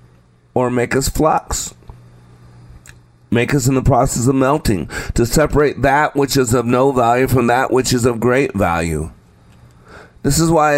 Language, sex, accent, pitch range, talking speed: English, male, American, 115-145 Hz, 160 wpm